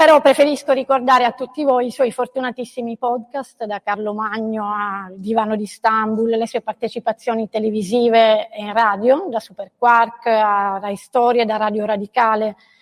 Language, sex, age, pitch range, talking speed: Italian, female, 30-49, 215-250 Hz, 150 wpm